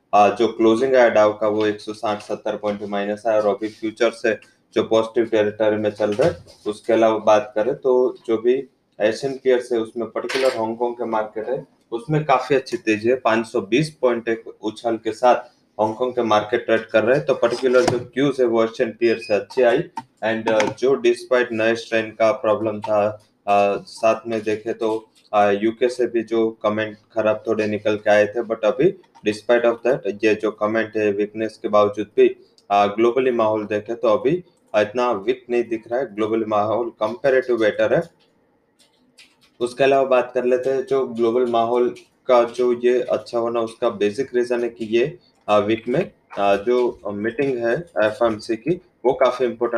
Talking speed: 120 wpm